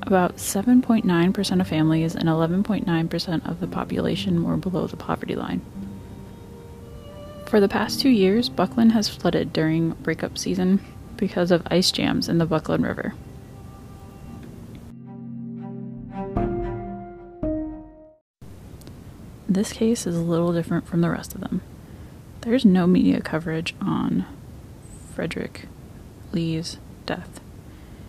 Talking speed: 110 wpm